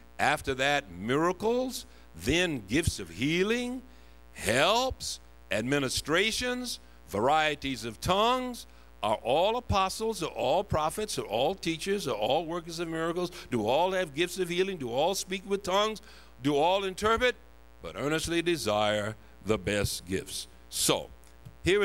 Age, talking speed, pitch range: 60-79, 130 wpm, 95-155 Hz